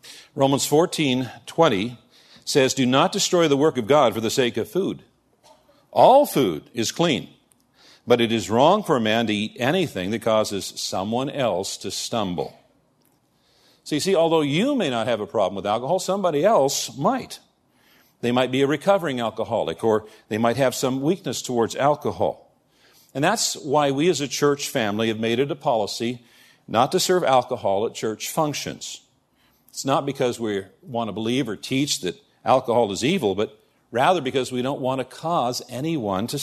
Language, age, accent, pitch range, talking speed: English, 50-69, American, 115-155 Hz, 180 wpm